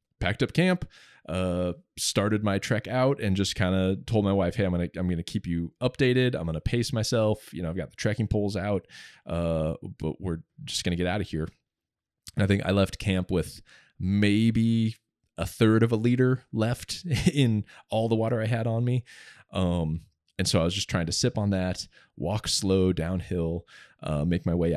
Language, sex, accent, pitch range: English, male, American, 85-105 Hz